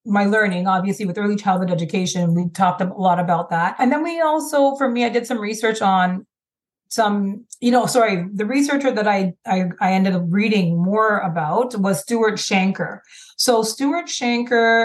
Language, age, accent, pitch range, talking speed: English, 30-49, American, 185-230 Hz, 180 wpm